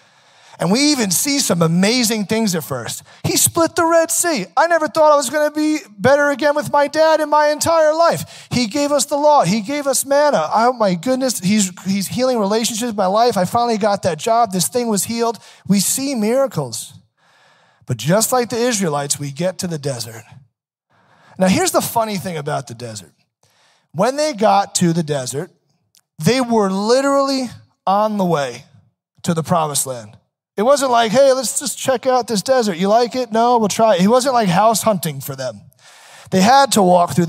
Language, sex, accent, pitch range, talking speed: English, male, American, 175-255 Hz, 200 wpm